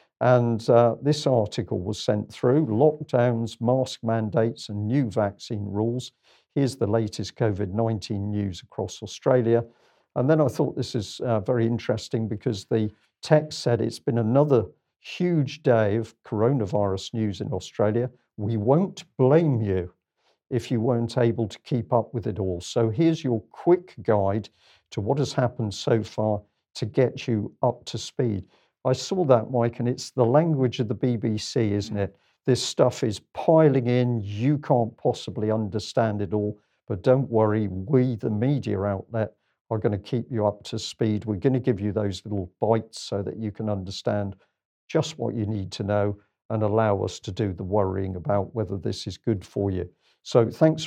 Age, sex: 50-69, male